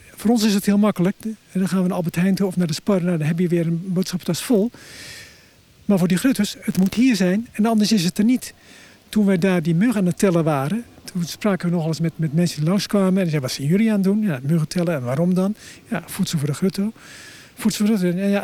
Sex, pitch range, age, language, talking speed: male, 175-215 Hz, 50-69, Dutch, 270 wpm